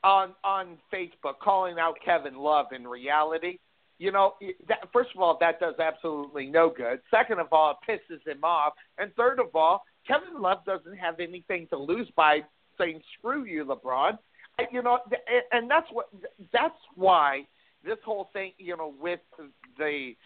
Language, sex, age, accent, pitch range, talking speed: English, male, 50-69, American, 165-250 Hz, 180 wpm